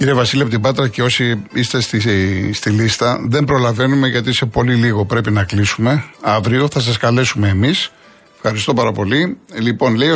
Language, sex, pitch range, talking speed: Greek, male, 100-125 Hz, 185 wpm